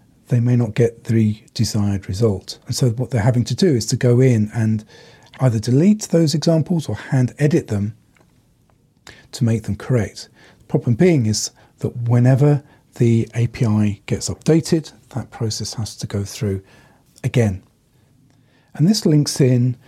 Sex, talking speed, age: male, 155 wpm, 40-59